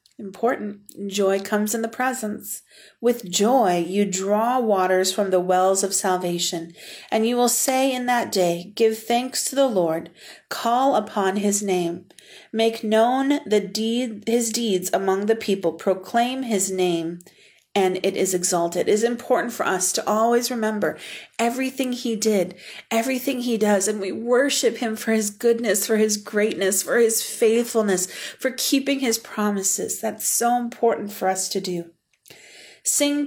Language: English